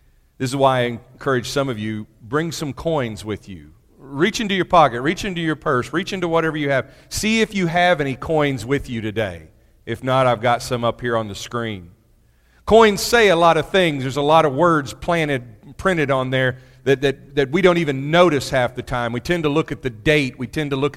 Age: 40-59